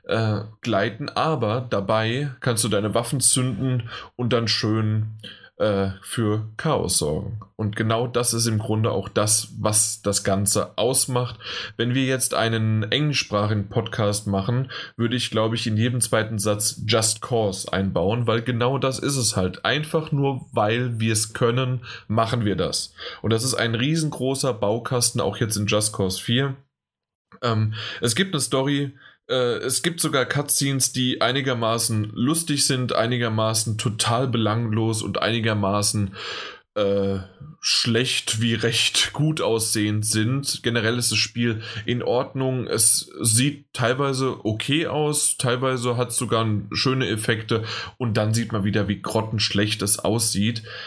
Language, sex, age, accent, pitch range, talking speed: German, male, 10-29, German, 110-130 Hz, 145 wpm